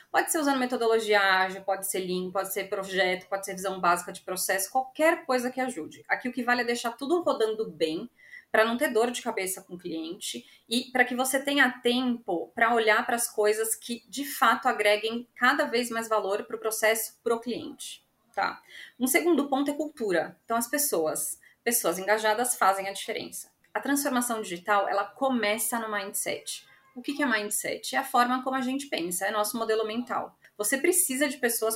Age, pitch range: 30-49, 205-270 Hz